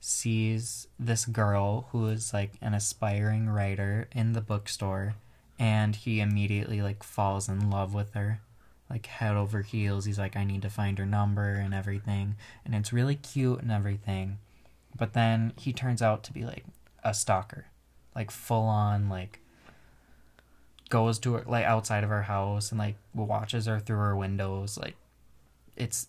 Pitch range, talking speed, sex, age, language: 100-120 Hz, 160 wpm, male, 20-39, English